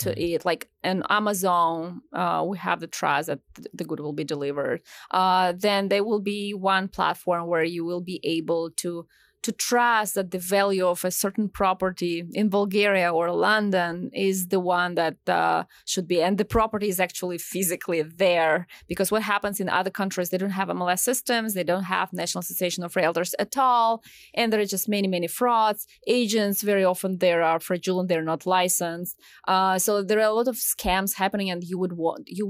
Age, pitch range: 20-39, 175-210 Hz